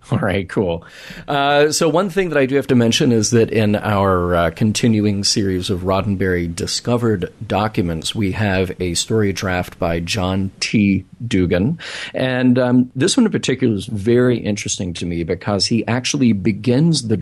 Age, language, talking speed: 40-59, English, 170 wpm